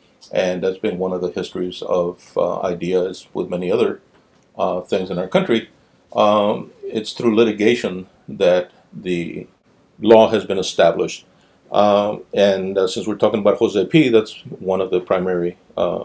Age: 50-69